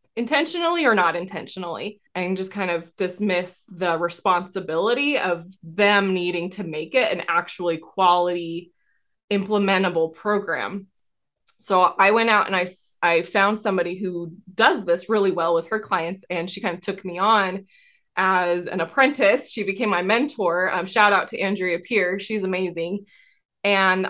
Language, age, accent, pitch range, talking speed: English, 20-39, American, 180-220 Hz, 155 wpm